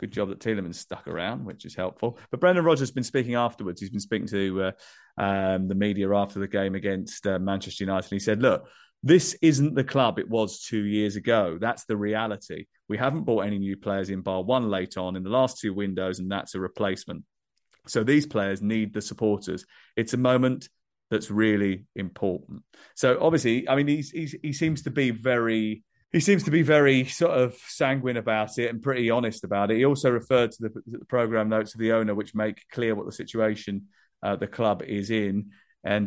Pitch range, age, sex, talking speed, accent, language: 100-120 Hz, 30-49, male, 210 wpm, British, English